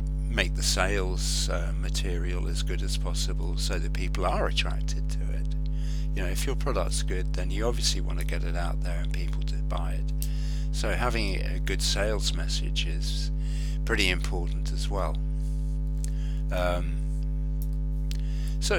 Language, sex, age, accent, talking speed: English, male, 50-69, British, 155 wpm